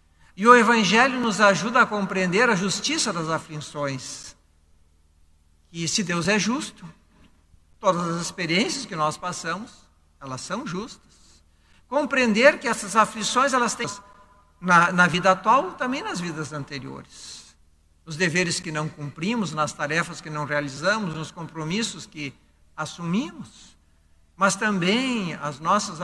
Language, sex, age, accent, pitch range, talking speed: Portuguese, male, 60-79, Brazilian, 145-225 Hz, 130 wpm